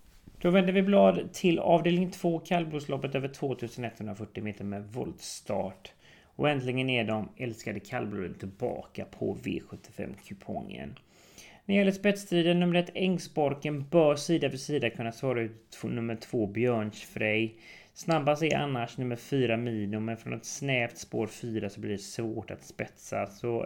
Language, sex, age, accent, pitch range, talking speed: English, male, 30-49, Swedish, 105-135 Hz, 150 wpm